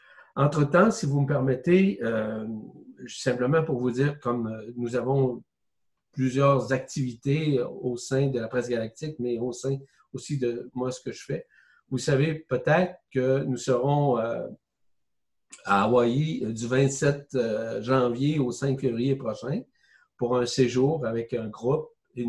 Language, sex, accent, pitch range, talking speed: French, male, Canadian, 120-145 Hz, 145 wpm